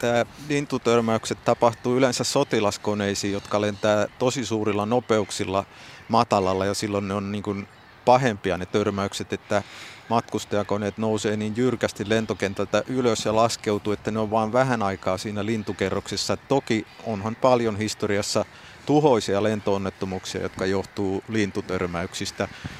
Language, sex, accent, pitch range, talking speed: Finnish, male, native, 100-115 Hz, 120 wpm